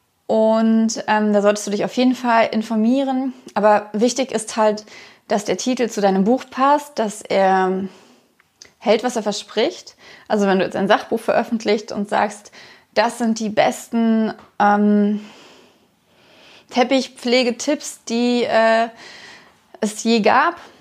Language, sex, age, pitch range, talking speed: German, female, 20-39, 200-250 Hz, 135 wpm